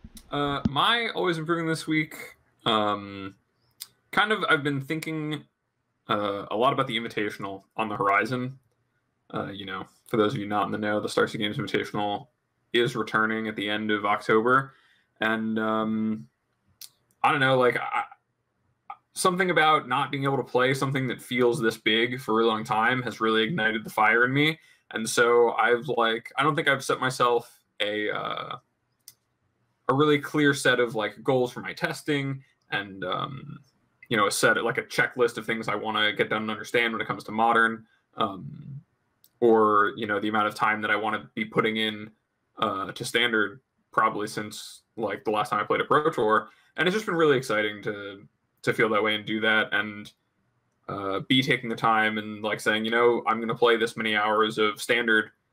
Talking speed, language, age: 195 wpm, English, 20-39